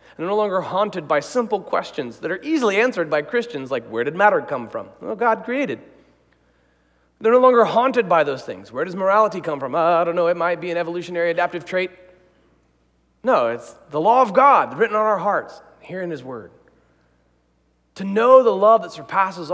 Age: 40-59